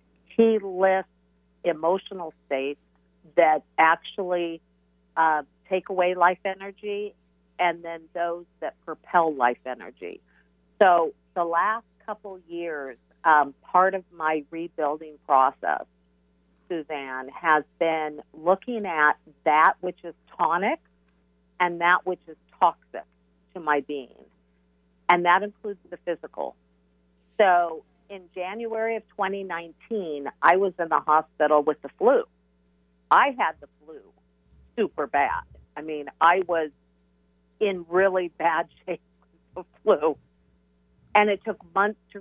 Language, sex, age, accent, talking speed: English, female, 50-69, American, 120 wpm